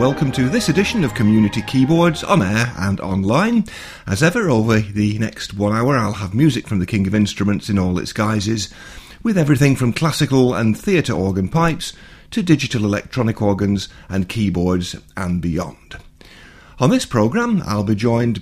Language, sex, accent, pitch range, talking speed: English, male, British, 100-145 Hz, 170 wpm